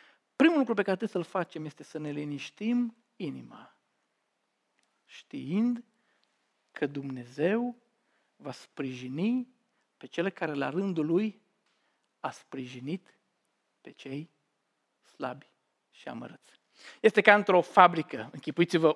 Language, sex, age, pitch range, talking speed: Romanian, male, 50-69, 155-200 Hz, 110 wpm